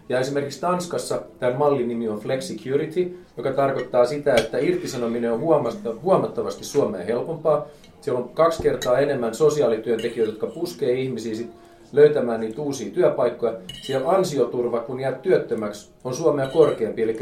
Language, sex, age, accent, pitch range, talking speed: Finnish, male, 30-49, native, 125-160 Hz, 140 wpm